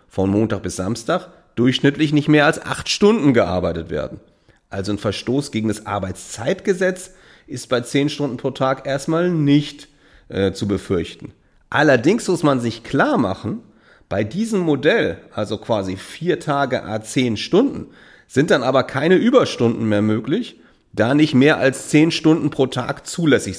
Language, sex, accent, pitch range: German, male, German, 105-155 Hz